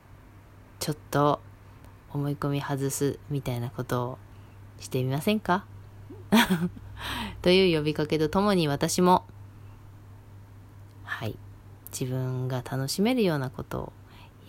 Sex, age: female, 20-39